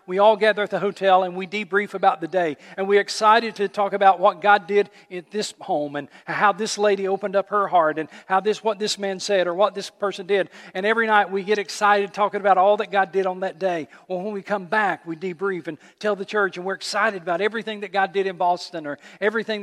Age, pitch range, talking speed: 50-69, 165-200 Hz, 250 wpm